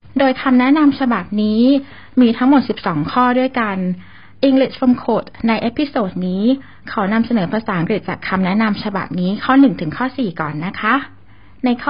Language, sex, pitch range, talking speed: English, female, 195-255 Hz, 50 wpm